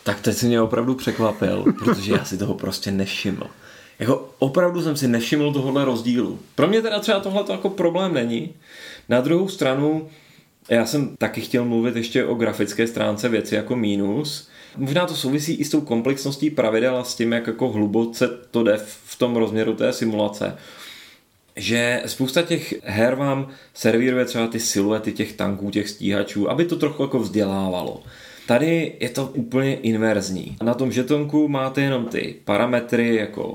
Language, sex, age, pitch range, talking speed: Czech, male, 30-49, 105-135 Hz, 170 wpm